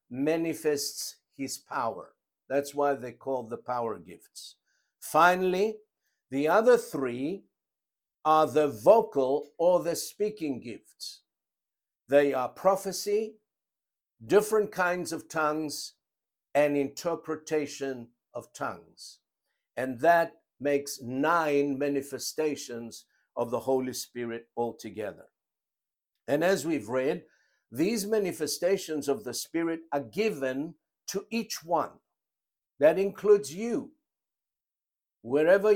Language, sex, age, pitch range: English, male, 60-79, 140-185 Hz